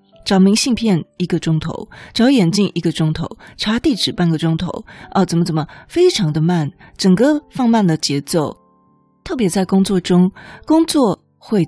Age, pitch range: 20-39, 160-210 Hz